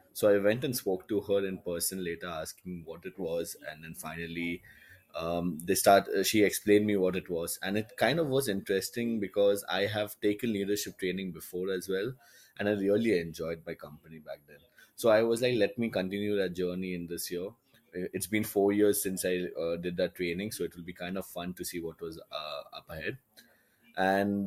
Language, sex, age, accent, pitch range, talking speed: English, male, 20-39, Indian, 90-100 Hz, 215 wpm